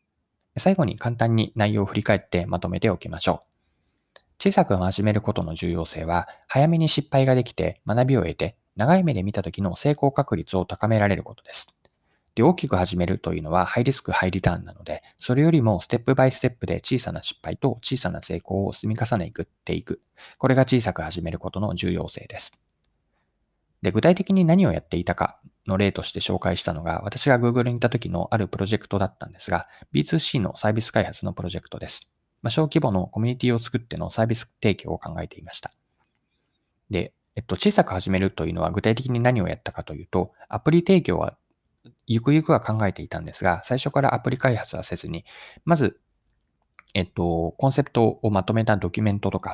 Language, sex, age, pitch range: Japanese, male, 20-39, 90-130 Hz